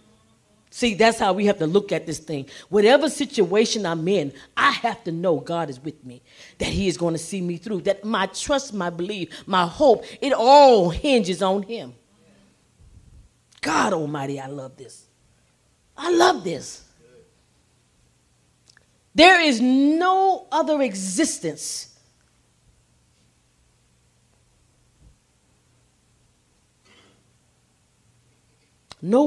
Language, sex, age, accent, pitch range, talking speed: English, female, 40-59, American, 155-255 Hz, 115 wpm